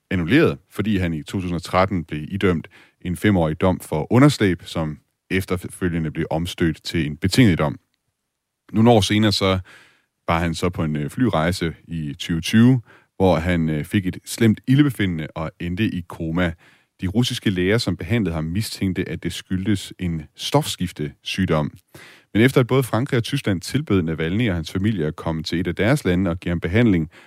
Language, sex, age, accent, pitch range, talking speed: Danish, male, 30-49, native, 80-105 Hz, 165 wpm